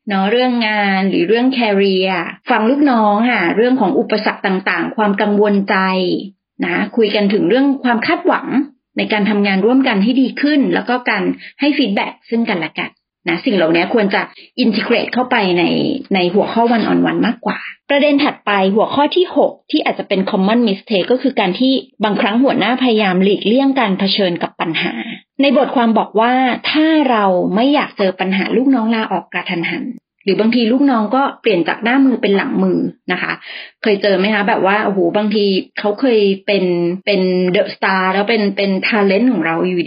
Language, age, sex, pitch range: Thai, 30-49, female, 190-250 Hz